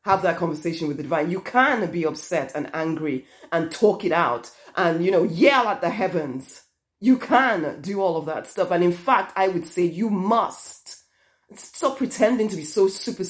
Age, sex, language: 30-49, female, English